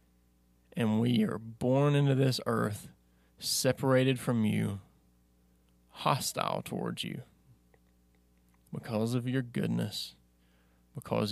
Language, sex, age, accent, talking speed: English, male, 20-39, American, 95 wpm